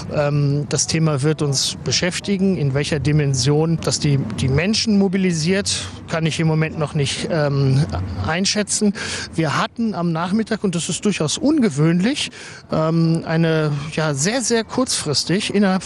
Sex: male